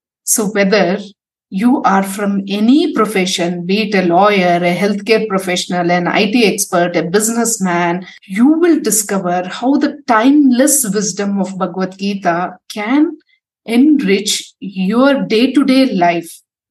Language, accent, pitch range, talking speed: English, Indian, 185-235 Hz, 120 wpm